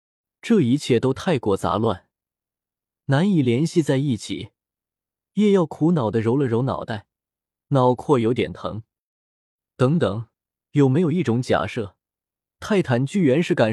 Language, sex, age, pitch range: Chinese, male, 20-39, 110-155 Hz